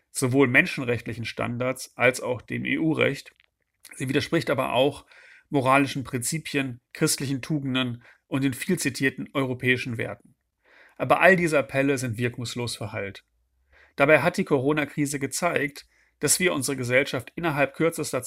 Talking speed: 125 wpm